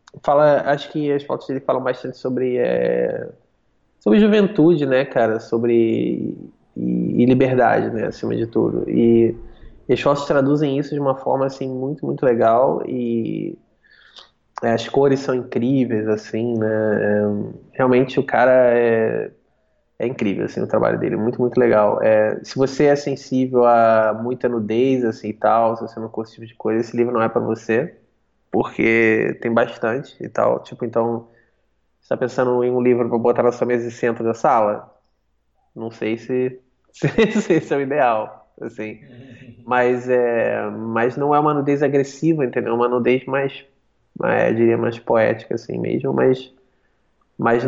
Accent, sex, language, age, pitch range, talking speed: Brazilian, male, Portuguese, 20-39, 115-135 Hz, 165 wpm